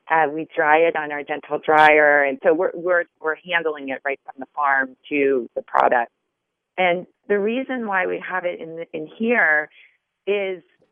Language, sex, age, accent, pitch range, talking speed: English, female, 40-59, American, 145-180 Hz, 185 wpm